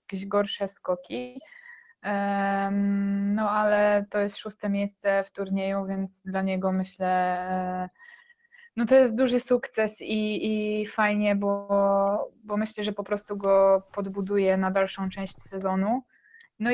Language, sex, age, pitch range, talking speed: Polish, female, 20-39, 195-225 Hz, 130 wpm